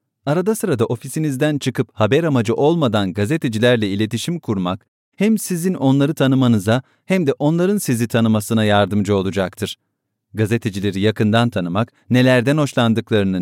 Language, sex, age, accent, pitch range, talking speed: English, male, 40-59, Turkish, 105-145 Hz, 115 wpm